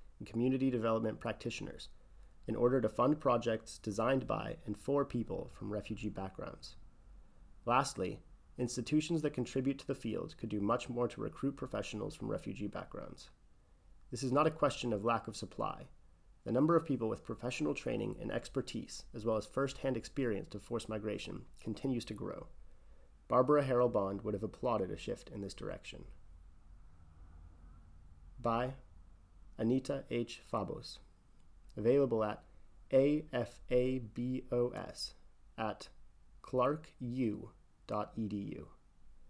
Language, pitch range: English, 95-130 Hz